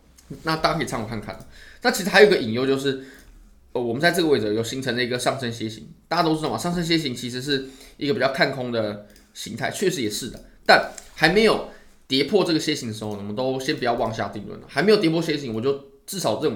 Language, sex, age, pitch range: Chinese, male, 20-39, 115-170 Hz